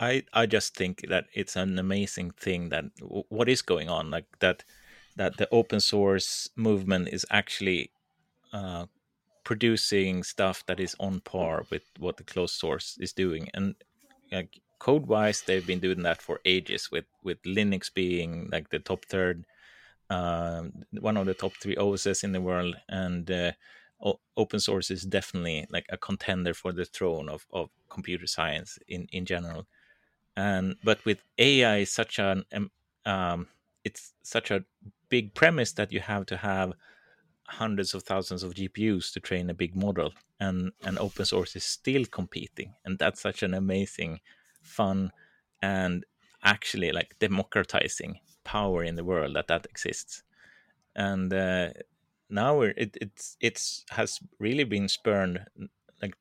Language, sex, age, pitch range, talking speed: English, male, 30-49, 90-100 Hz, 155 wpm